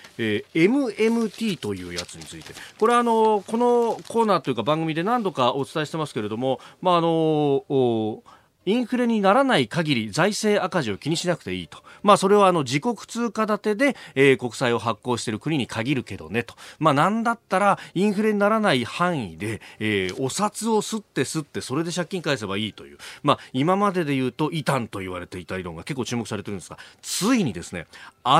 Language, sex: Japanese, male